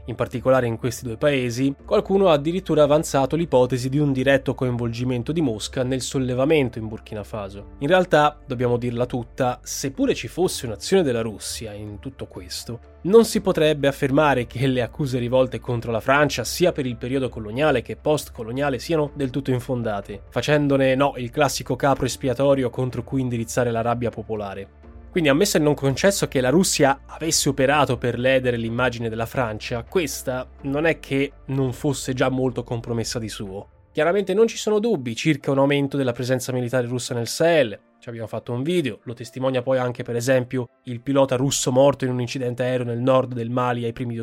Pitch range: 120-145 Hz